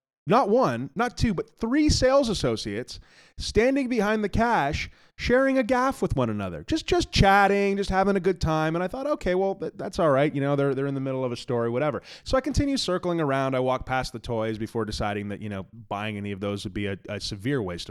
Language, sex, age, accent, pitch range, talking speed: English, male, 20-39, American, 130-200 Hz, 235 wpm